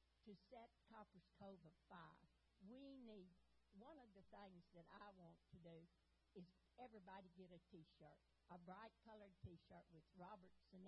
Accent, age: American, 60-79